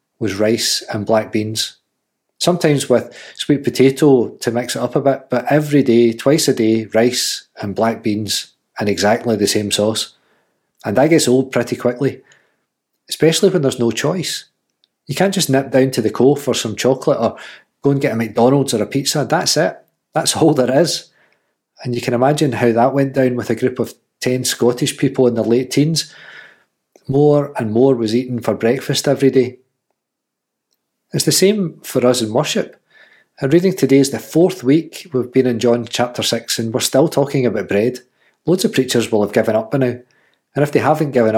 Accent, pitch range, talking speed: British, 115-140 Hz, 195 wpm